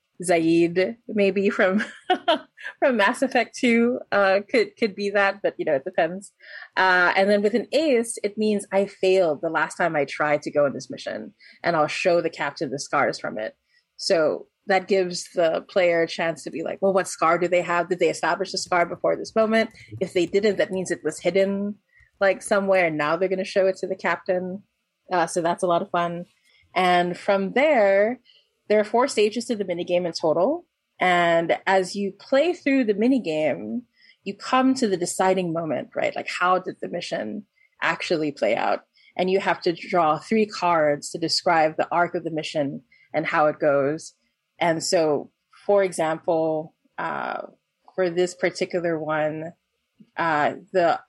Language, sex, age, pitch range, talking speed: English, female, 20-39, 170-210 Hz, 190 wpm